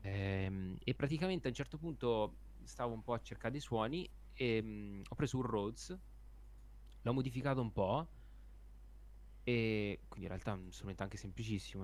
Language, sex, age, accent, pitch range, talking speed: Italian, male, 20-39, native, 100-140 Hz, 160 wpm